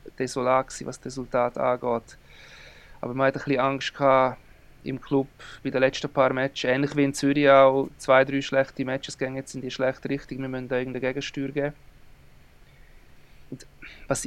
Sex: male